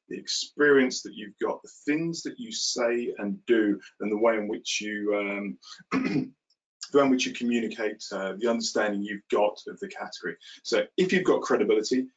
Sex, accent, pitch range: male, British, 110-165 Hz